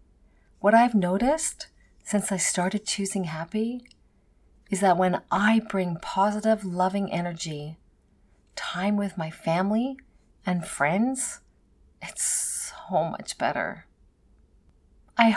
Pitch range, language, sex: 150-200 Hz, English, female